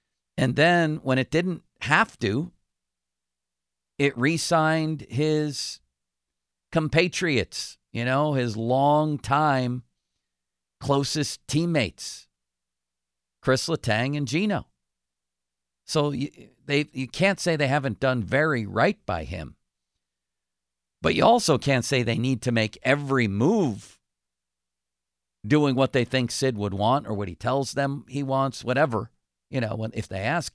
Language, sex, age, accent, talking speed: English, male, 50-69, American, 130 wpm